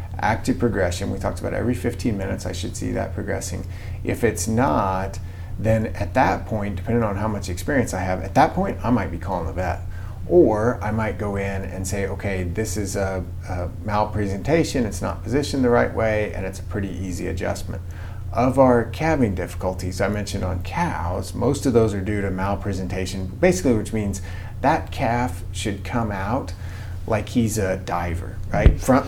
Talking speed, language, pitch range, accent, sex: 185 wpm, English, 95-115 Hz, American, male